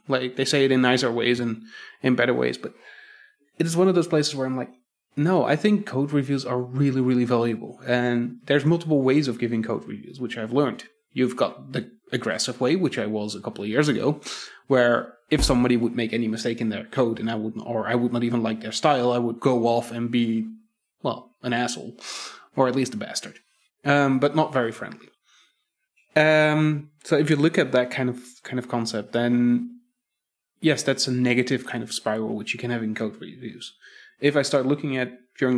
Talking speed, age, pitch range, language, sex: 215 wpm, 20-39, 120-150 Hz, English, male